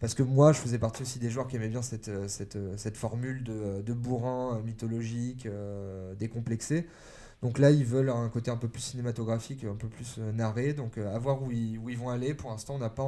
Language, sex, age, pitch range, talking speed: French, male, 20-39, 110-130 Hz, 230 wpm